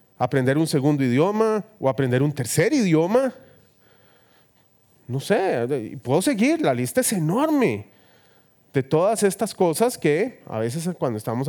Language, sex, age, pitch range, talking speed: Spanish, male, 30-49, 135-195 Hz, 135 wpm